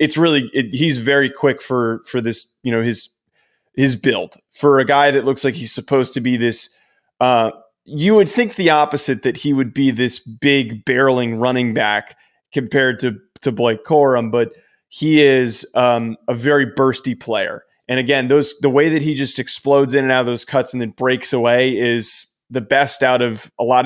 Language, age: English, 20-39